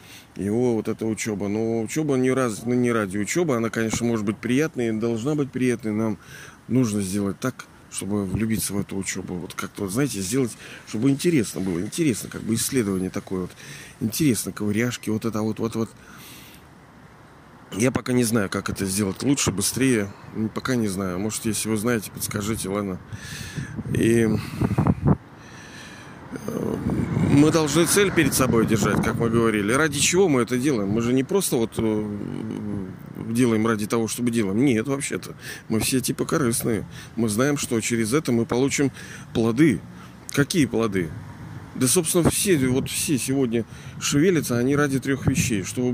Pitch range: 110-140 Hz